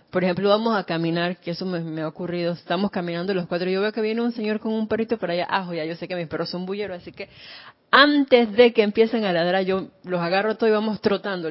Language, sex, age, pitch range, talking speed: Spanish, female, 30-49, 175-215 Hz, 270 wpm